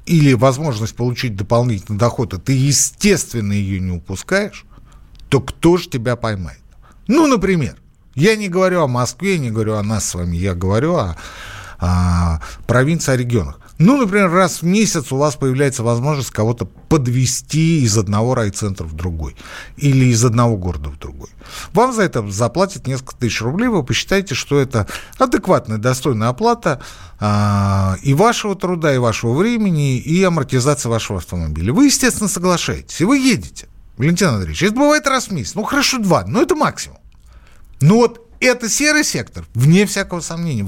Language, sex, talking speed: Russian, male, 165 wpm